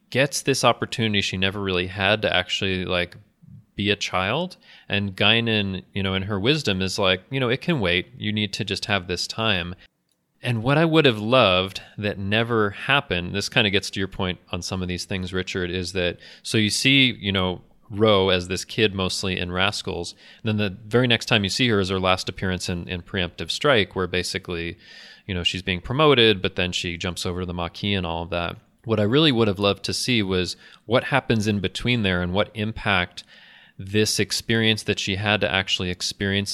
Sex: male